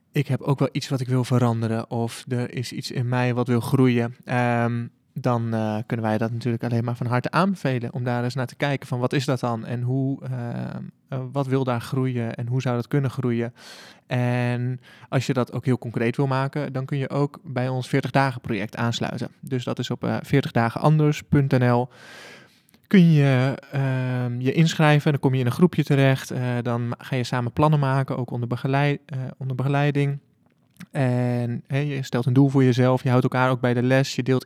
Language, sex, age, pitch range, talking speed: Dutch, male, 20-39, 120-140 Hz, 205 wpm